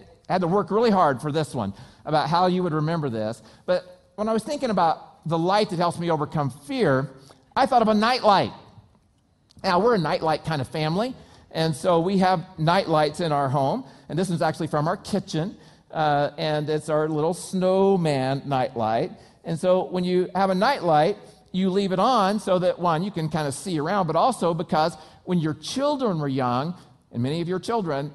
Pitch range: 135-185 Hz